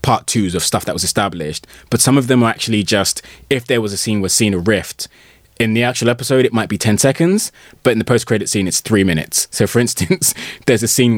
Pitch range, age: 100-135 Hz, 20-39